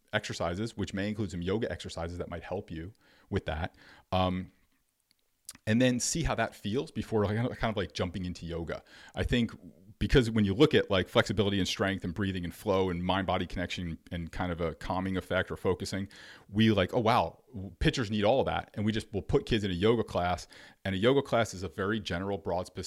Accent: American